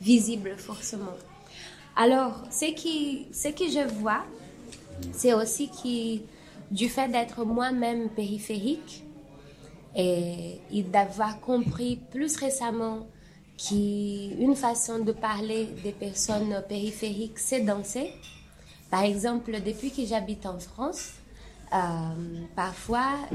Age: 20-39